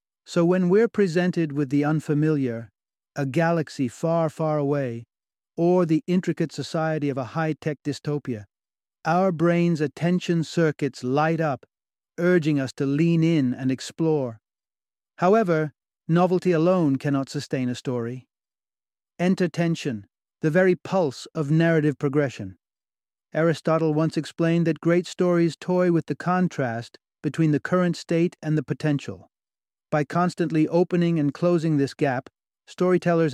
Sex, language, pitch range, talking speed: male, English, 135-165 Hz, 135 wpm